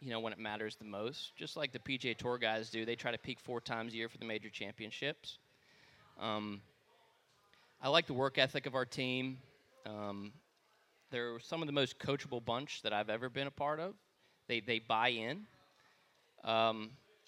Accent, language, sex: American, English, male